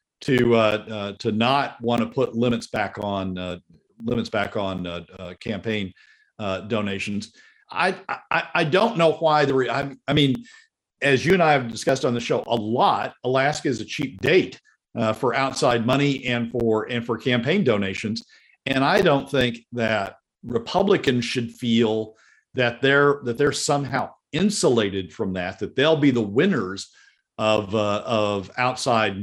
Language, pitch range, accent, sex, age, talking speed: English, 110-135 Hz, American, male, 50-69, 170 wpm